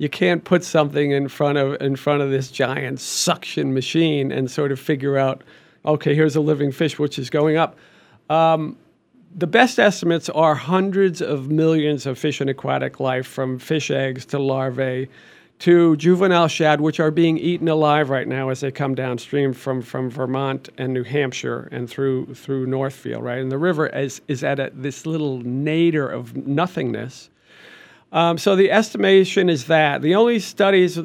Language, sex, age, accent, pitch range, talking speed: English, male, 40-59, American, 140-170 Hz, 180 wpm